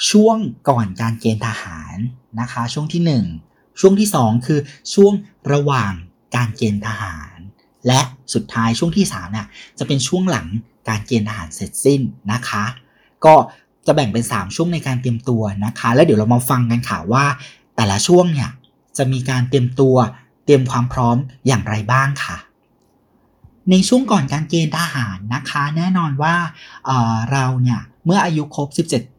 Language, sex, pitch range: Thai, male, 115-150 Hz